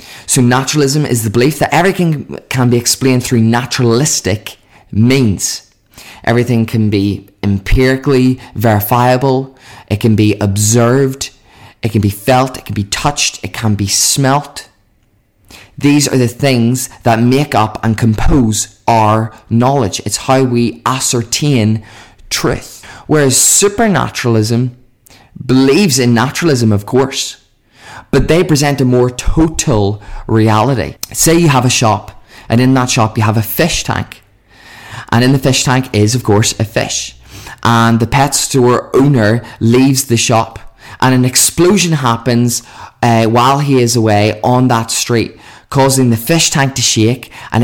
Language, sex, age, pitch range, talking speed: English, male, 20-39, 110-130 Hz, 145 wpm